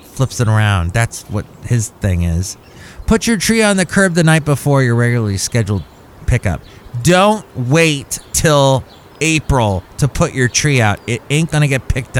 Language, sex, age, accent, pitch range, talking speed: English, male, 30-49, American, 115-170 Hz, 170 wpm